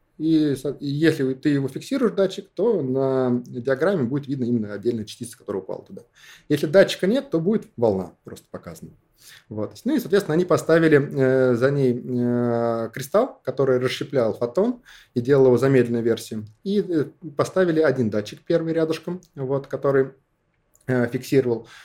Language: Russian